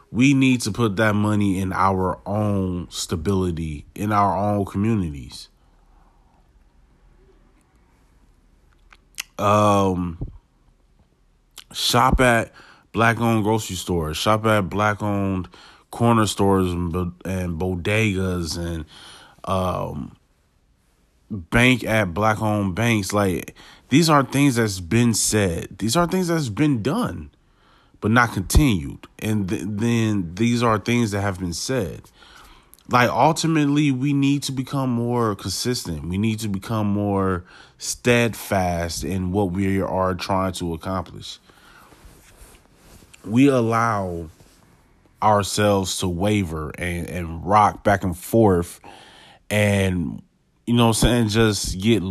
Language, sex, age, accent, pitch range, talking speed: English, male, 30-49, American, 90-115 Hz, 115 wpm